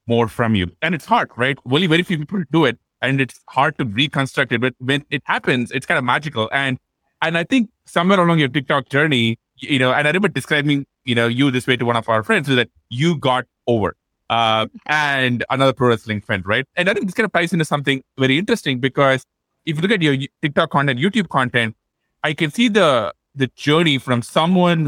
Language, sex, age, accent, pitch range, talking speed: English, male, 20-39, Indian, 120-160 Hz, 225 wpm